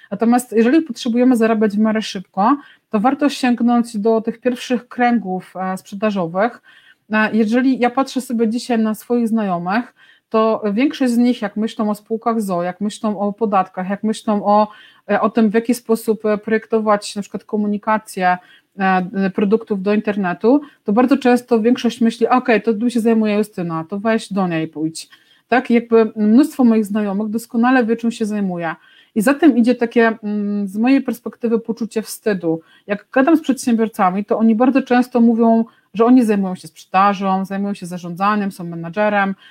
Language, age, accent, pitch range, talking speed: Polish, 40-59, native, 205-240 Hz, 165 wpm